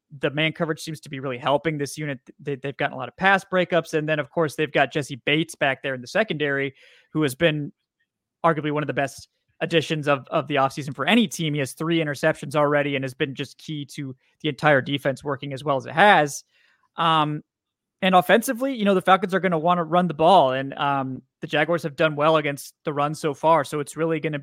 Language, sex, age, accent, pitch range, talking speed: English, male, 20-39, American, 140-160 Hz, 245 wpm